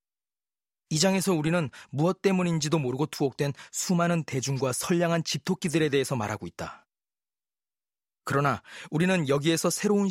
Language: Korean